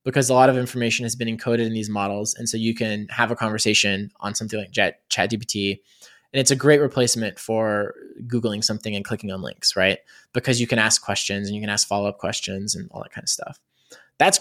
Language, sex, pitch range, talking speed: English, male, 115-155 Hz, 230 wpm